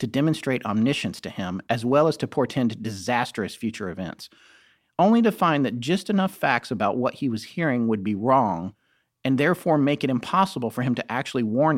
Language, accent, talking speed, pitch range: English, American, 195 wpm, 110-150 Hz